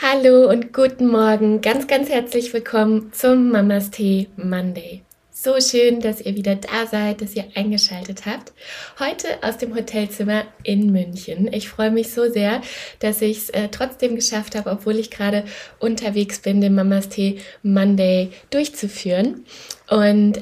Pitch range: 195-230 Hz